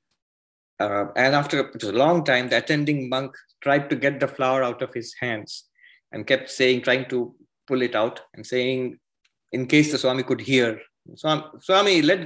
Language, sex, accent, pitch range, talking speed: English, male, Indian, 130-180 Hz, 175 wpm